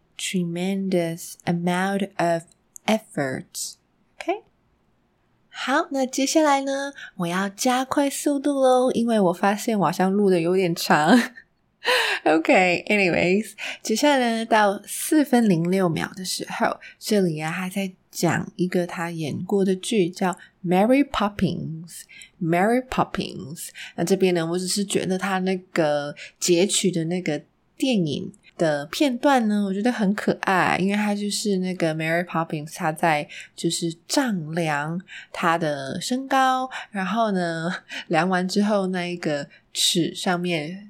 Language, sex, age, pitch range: Chinese, female, 20-39, 165-210 Hz